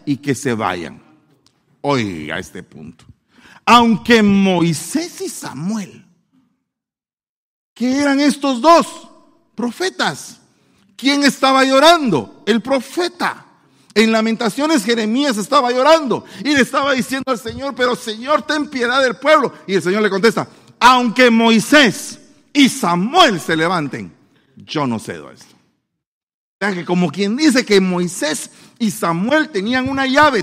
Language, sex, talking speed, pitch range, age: Spanish, male, 130 wpm, 205-275 Hz, 50-69